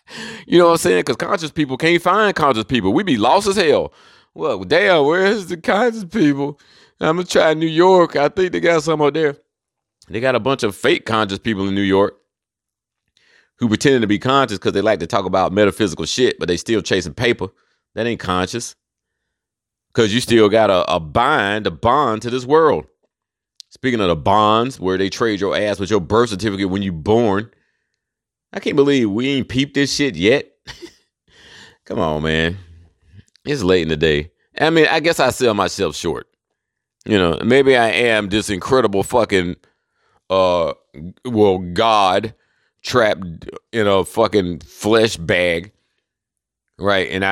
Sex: male